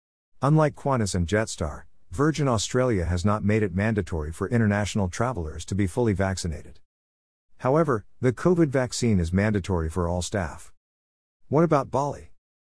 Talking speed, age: 140 wpm, 50-69